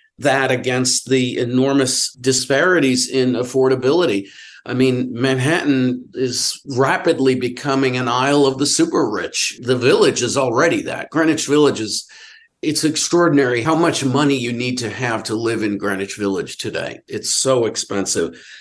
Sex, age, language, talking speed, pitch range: male, 50-69, English, 145 wpm, 120-145 Hz